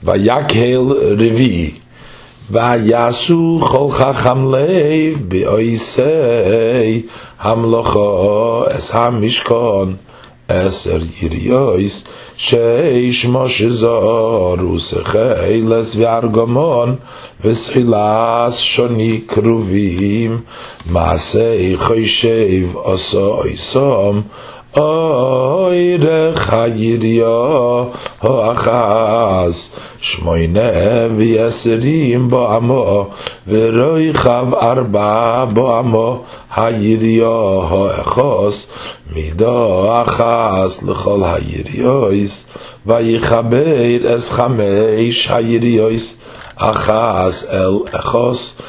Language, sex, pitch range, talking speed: English, male, 110-125 Hz, 60 wpm